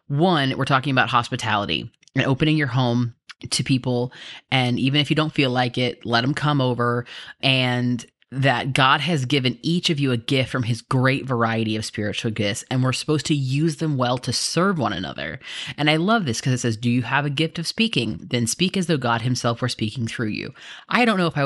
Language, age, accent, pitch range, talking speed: English, 30-49, American, 120-145 Hz, 225 wpm